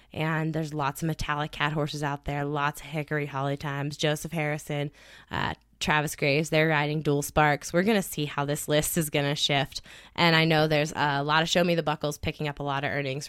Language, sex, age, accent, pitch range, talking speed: English, female, 20-39, American, 145-160 Hz, 230 wpm